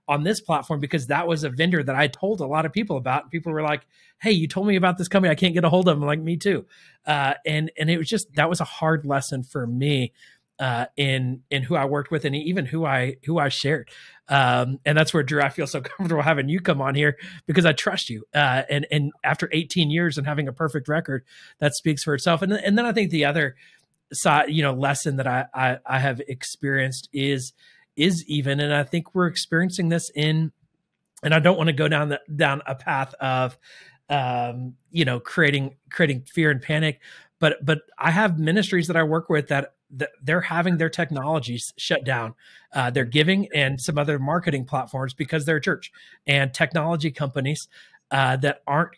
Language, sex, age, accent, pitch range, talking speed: English, male, 30-49, American, 135-165 Hz, 220 wpm